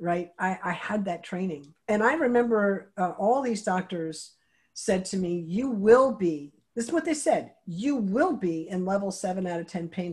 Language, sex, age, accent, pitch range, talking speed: English, female, 50-69, American, 165-220 Hz, 200 wpm